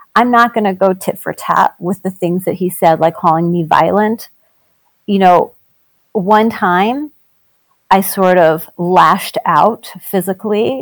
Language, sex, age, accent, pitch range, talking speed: English, female, 40-59, American, 180-225 Hz, 155 wpm